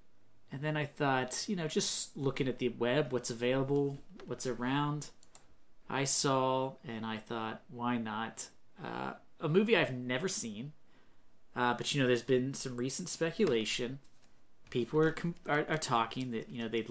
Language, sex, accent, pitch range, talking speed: English, male, American, 120-160 Hz, 165 wpm